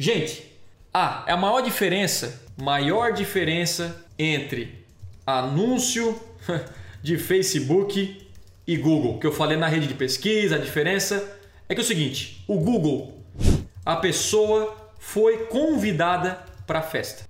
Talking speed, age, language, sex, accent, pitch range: 130 wpm, 20-39, Portuguese, male, Brazilian, 145-200 Hz